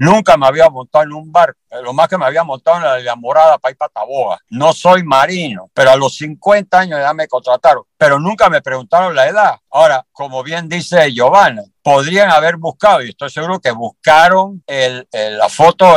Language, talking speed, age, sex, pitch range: English, 205 wpm, 60-79, male, 140-200 Hz